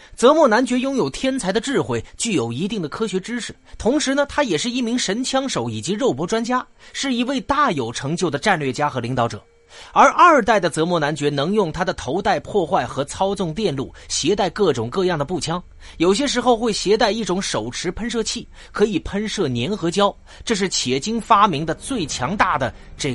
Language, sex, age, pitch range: Chinese, male, 30-49, 145-240 Hz